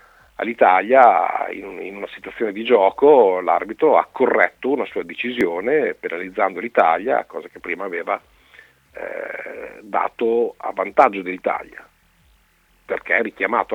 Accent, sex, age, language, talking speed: native, male, 50-69, Italian, 115 wpm